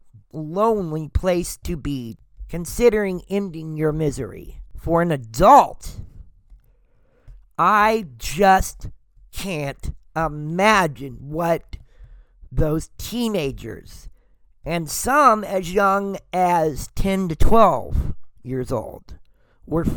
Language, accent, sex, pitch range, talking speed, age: English, American, male, 140-205 Hz, 85 wpm, 50-69